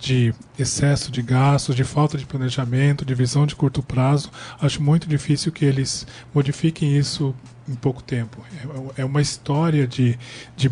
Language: Portuguese